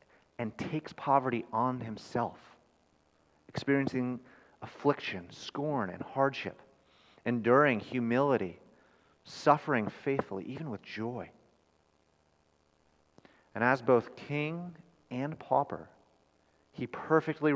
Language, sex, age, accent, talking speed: English, male, 30-49, American, 85 wpm